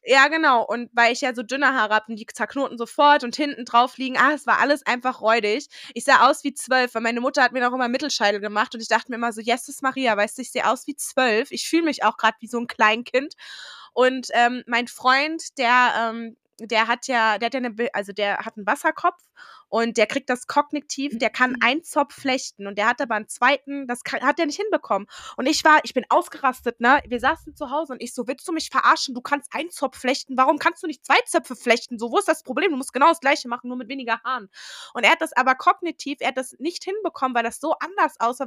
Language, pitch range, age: German, 230-280 Hz, 20-39